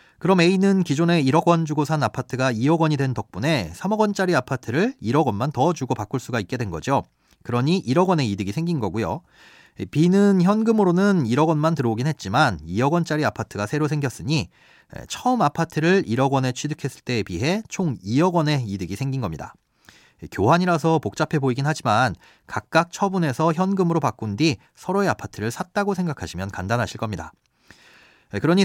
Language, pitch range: Korean, 115-180 Hz